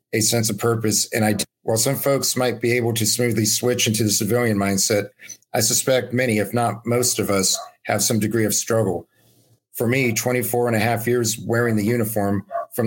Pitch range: 105-120 Hz